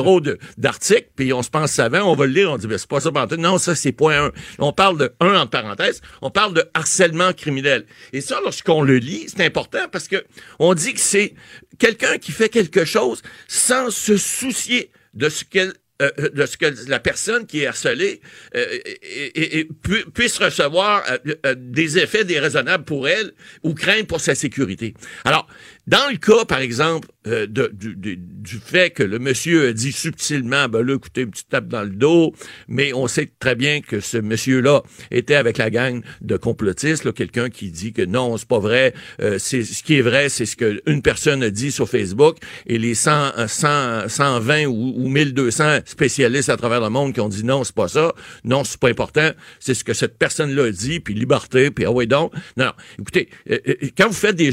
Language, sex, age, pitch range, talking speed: French, male, 60-79, 120-170 Hz, 210 wpm